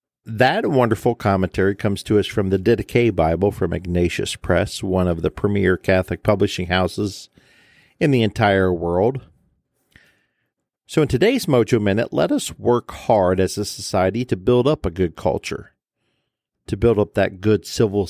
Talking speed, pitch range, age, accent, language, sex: 160 wpm, 90-110 Hz, 50-69, American, English, male